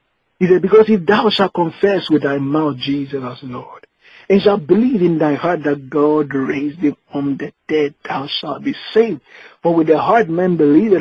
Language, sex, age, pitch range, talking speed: English, male, 50-69, 145-200 Hz, 195 wpm